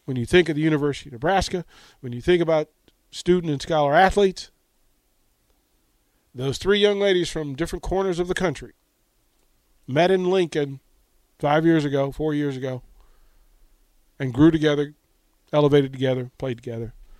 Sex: male